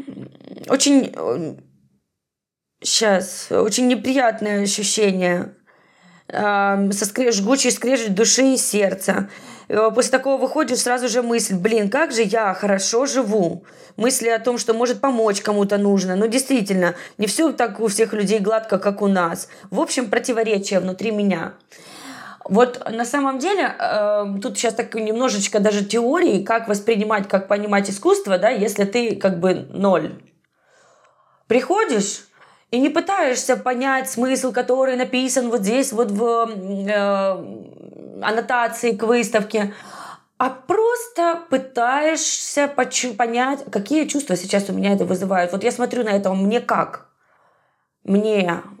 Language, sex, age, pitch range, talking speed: Russian, female, 20-39, 200-255 Hz, 125 wpm